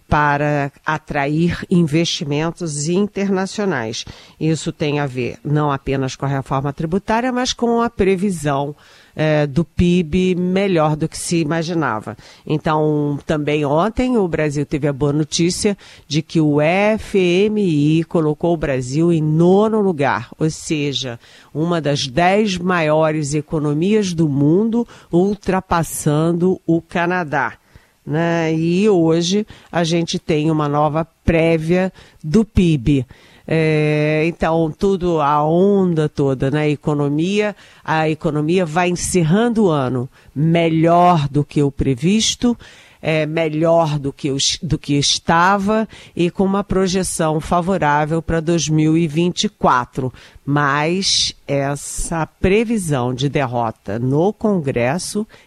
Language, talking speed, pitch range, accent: Portuguese, 120 wpm, 145-180 Hz, Brazilian